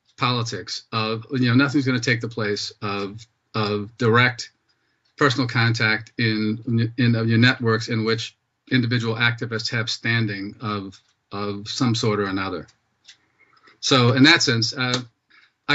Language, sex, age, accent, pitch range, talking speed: English, male, 40-59, American, 110-140 Hz, 135 wpm